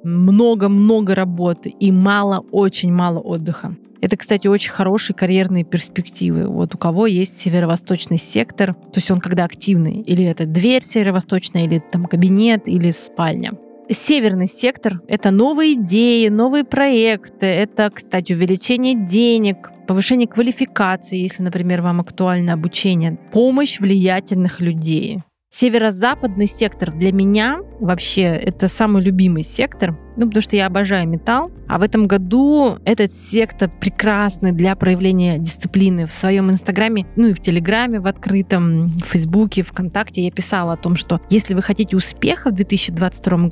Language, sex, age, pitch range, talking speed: Russian, female, 20-39, 180-220 Hz, 145 wpm